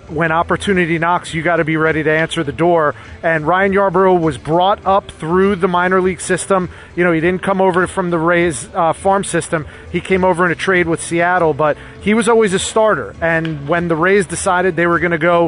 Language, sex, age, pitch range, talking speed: English, male, 30-49, 160-190 Hz, 230 wpm